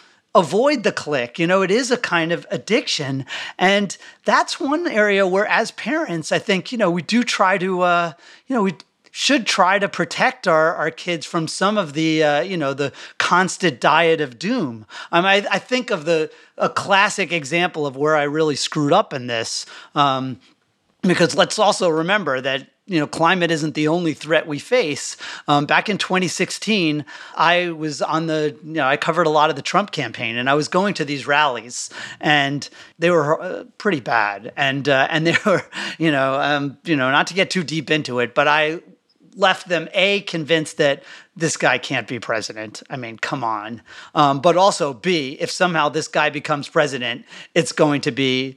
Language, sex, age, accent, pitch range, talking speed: English, male, 30-49, American, 145-185 Hz, 195 wpm